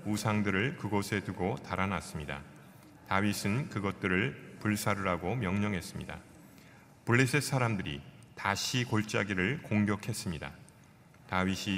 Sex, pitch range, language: male, 95-115 Hz, Korean